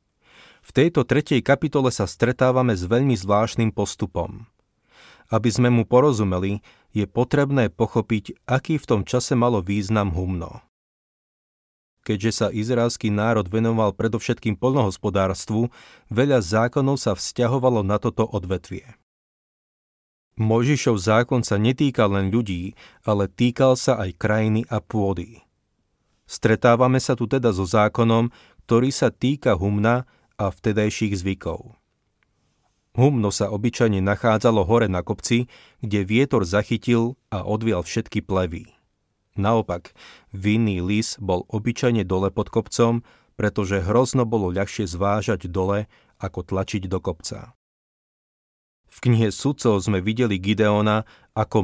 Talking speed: 120 wpm